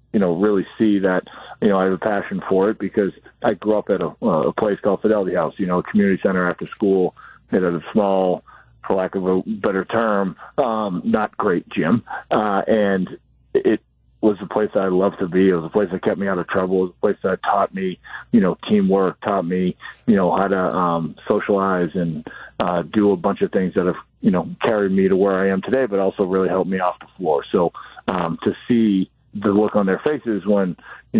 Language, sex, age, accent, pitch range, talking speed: English, male, 40-59, American, 95-105 Hz, 235 wpm